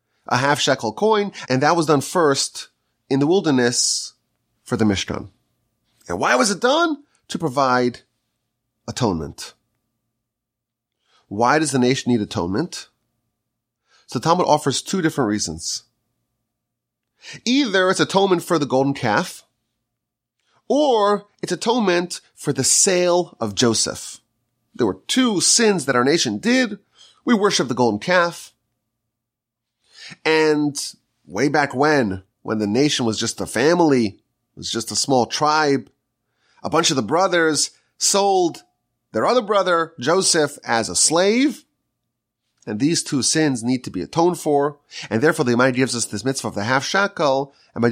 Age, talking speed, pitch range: 30-49, 145 wpm, 115-160 Hz